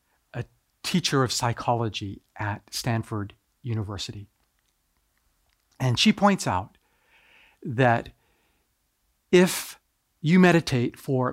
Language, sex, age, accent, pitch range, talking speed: English, male, 50-69, American, 120-160 Hz, 80 wpm